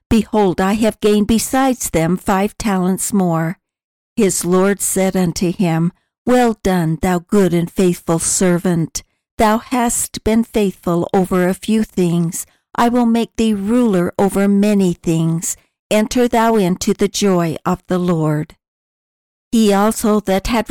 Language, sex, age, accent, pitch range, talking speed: English, female, 60-79, American, 180-225 Hz, 140 wpm